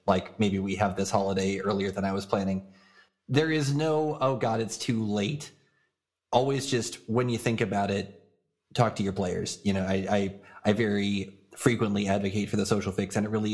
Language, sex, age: English, male, 30-49